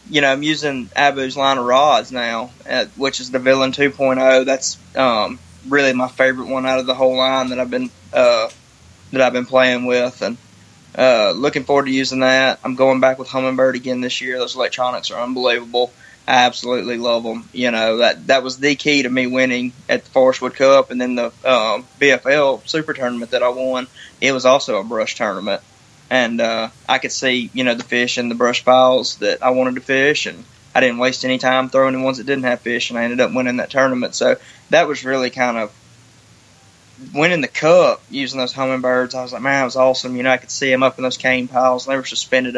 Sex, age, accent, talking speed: male, 20-39, American, 225 wpm